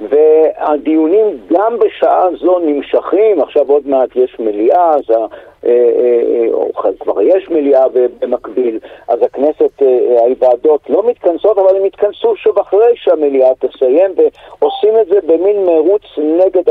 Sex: male